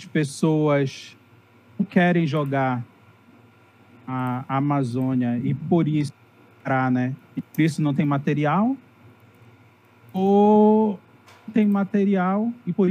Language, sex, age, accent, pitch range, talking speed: Portuguese, male, 40-59, Brazilian, 125-165 Hz, 100 wpm